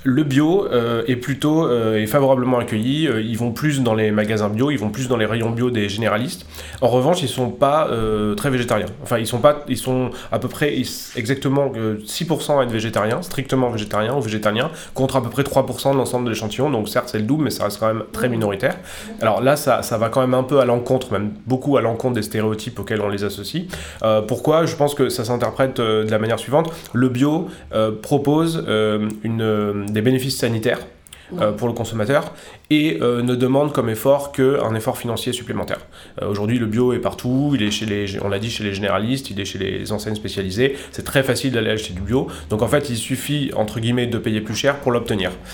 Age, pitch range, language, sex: 20-39, 110-130 Hz, French, male